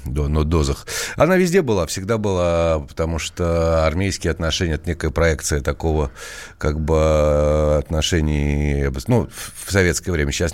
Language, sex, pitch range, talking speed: Russian, male, 80-105 Hz, 125 wpm